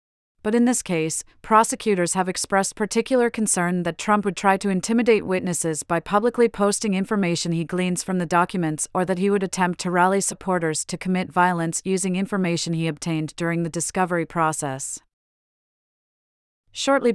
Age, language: 40-59, English